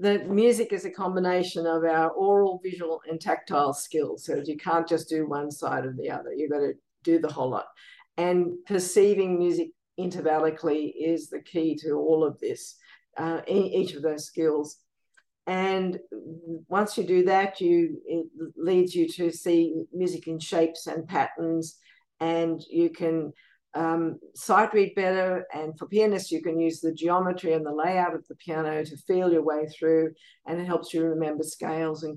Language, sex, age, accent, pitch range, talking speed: English, female, 50-69, Australian, 155-185 Hz, 175 wpm